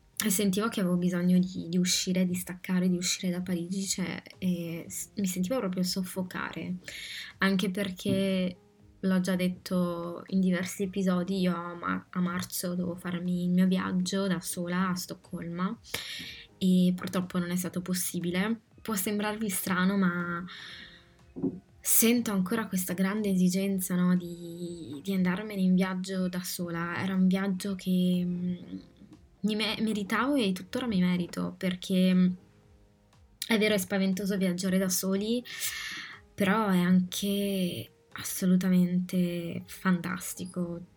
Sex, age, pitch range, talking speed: female, 20-39, 180-195 Hz, 125 wpm